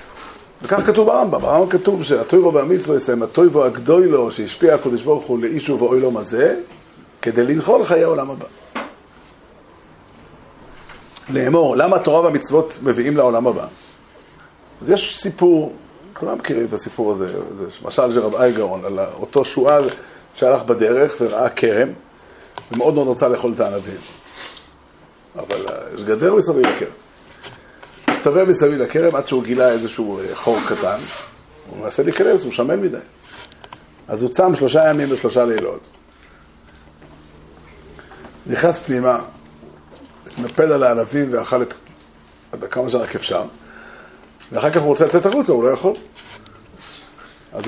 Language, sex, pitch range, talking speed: Hebrew, male, 115-195 Hz, 130 wpm